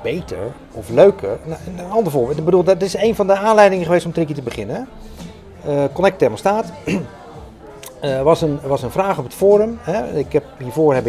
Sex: male